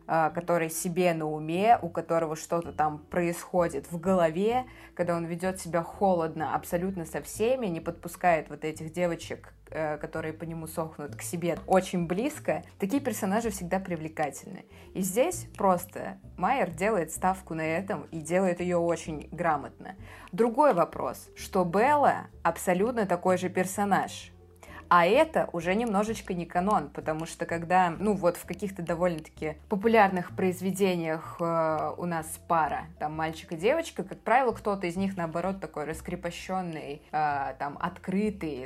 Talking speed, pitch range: 140 wpm, 160-185 Hz